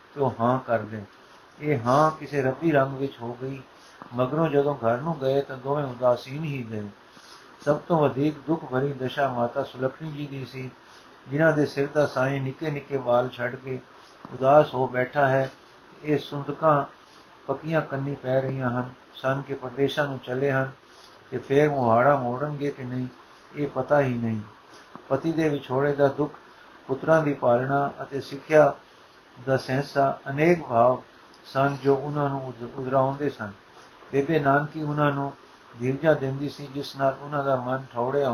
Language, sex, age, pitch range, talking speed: Punjabi, male, 50-69, 130-145 Hz, 160 wpm